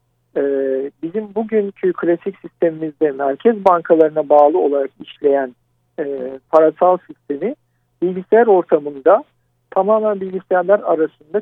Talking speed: 85 wpm